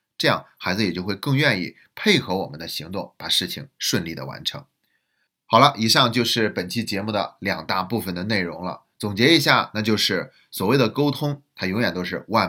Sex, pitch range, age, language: male, 100-130 Hz, 30-49, Chinese